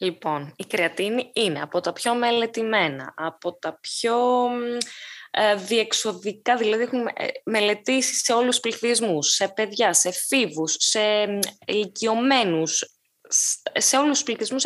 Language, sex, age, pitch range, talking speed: Greek, female, 20-39, 175-250 Hz, 120 wpm